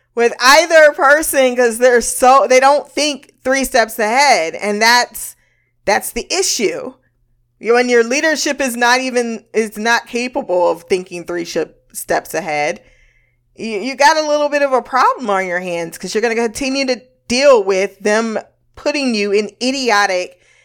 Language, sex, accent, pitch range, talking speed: English, female, American, 185-245 Hz, 165 wpm